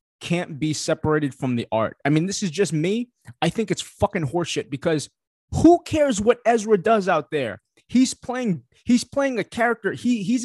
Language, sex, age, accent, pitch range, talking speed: English, male, 20-39, American, 150-235 Hz, 190 wpm